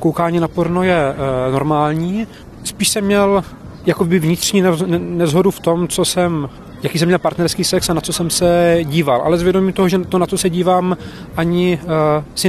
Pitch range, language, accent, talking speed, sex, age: 155-175 Hz, Czech, native, 175 wpm, male, 30-49